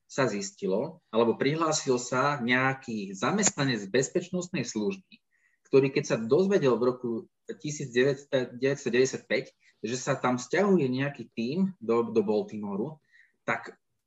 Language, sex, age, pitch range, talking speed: Slovak, male, 20-39, 120-150 Hz, 110 wpm